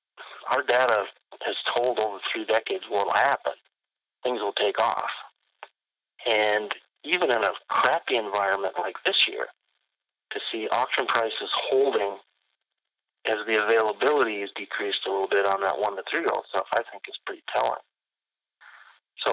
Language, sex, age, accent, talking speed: English, male, 40-59, American, 155 wpm